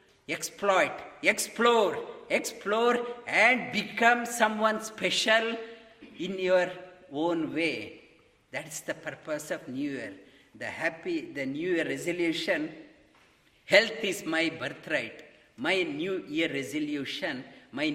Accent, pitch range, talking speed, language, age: Indian, 175-240 Hz, 105 wpm, English, 50-69